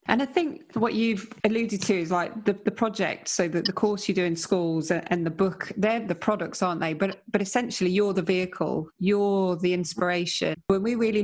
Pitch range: 170-200 Hz